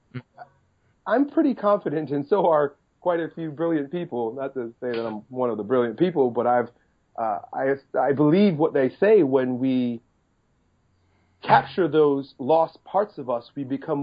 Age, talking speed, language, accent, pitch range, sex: 40-59, 170 wpm, English, American, 115-145 Hz, male